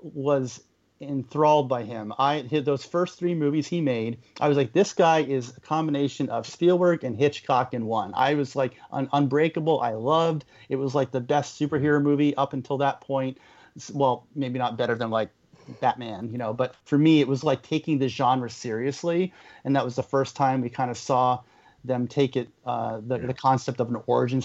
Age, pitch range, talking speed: 30-49, 120-140 Hz, 200 wpm